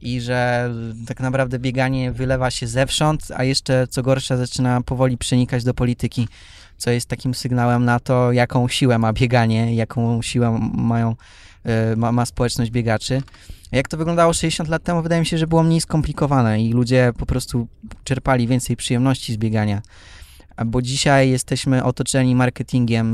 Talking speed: 160 wpm